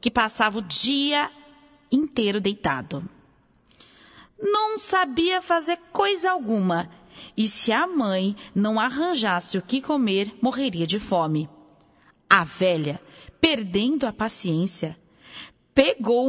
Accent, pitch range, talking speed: Brazilian, 200-305 Hz, 105 wpm